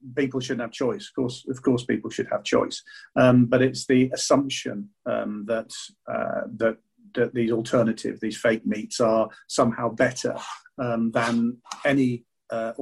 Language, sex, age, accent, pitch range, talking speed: English, male, 40-59, British, 110-130 Hz, 160 wpm